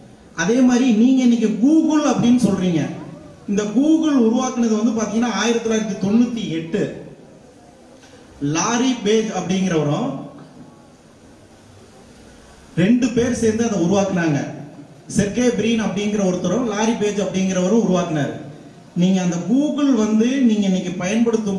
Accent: native